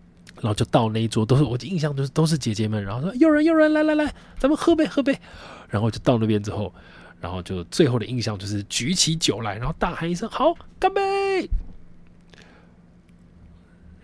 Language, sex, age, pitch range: Chinese, male, 20-39, 95-140 Hz